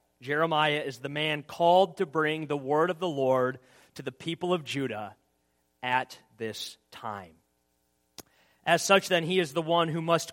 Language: English